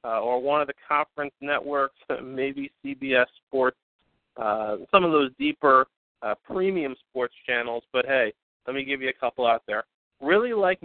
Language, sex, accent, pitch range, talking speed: English, male, American, 125-150 Hz, 170 wpm